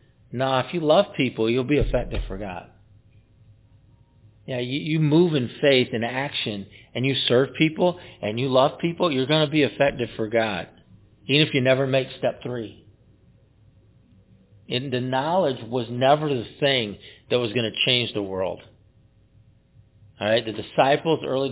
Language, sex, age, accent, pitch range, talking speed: English, male, 40-59, American, 110-135 Hz, 165 wpm